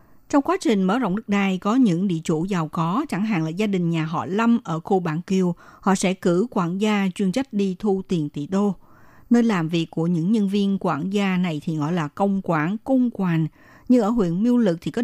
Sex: female